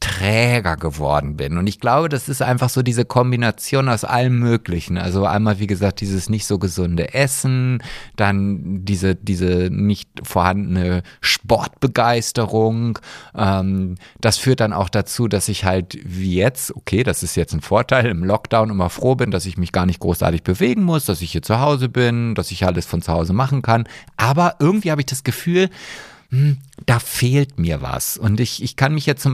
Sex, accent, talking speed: male, German, 185 wpm